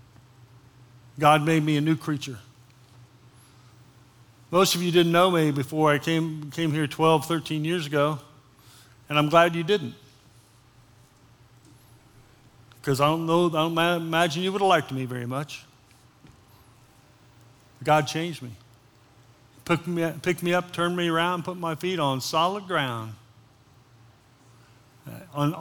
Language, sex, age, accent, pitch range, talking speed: English, male, 50-69, American, 120-165 Hz, 135 wpm